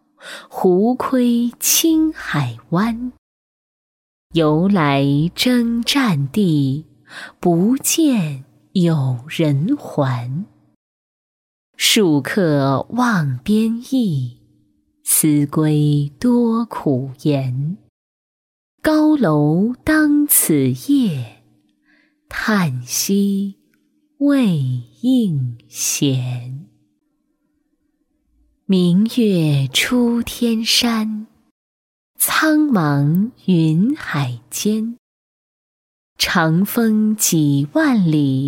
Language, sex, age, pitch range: Chinese, female, 20-39, 145-245 Hz